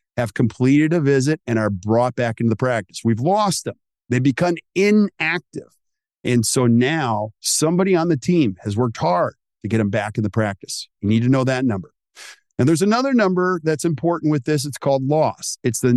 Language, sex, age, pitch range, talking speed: English, male, 50-69, 110-155 Hz, 200 wpm